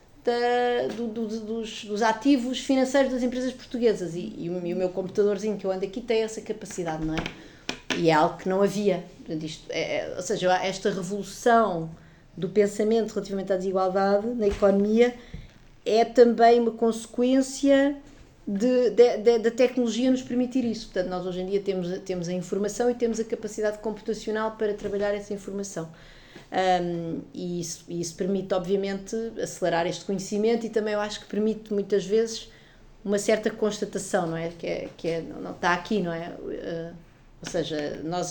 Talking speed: 170 wpm